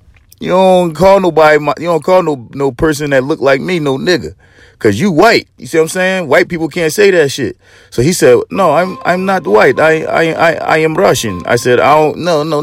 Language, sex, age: English, male, 30-49